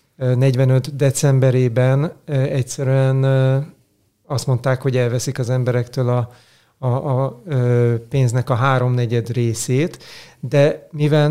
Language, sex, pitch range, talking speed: Hungarian, male, 125-140 Hz, 95 wpm